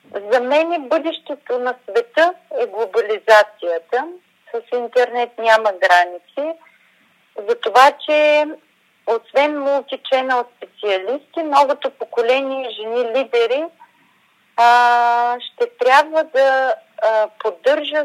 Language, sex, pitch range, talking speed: Bulgarian, female, 220-295 Hz, 95 wpm